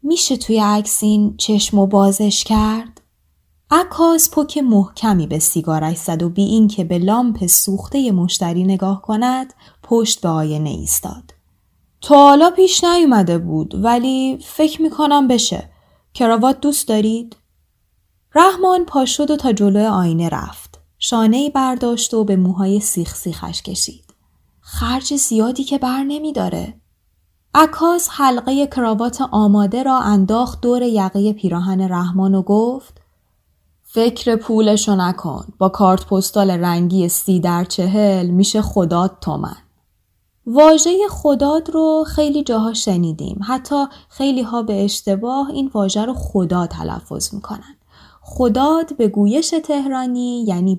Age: 10-29